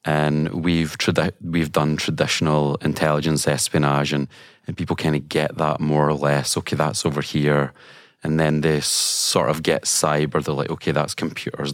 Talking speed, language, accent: 170 wpm, English, British